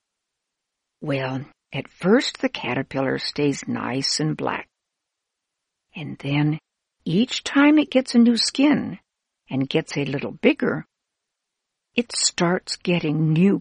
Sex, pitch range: female, 155-245 Hz